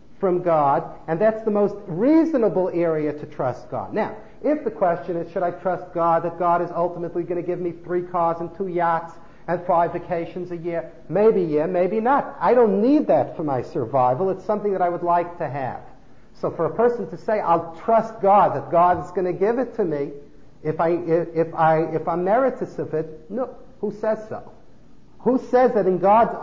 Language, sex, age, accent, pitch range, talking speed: English, male, 50-69, American, 170-215 Hz, 210 wpm